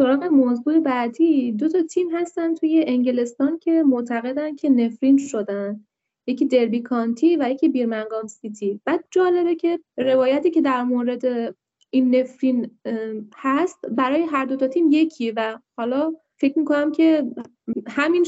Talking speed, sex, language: 140 wpm, female, Persian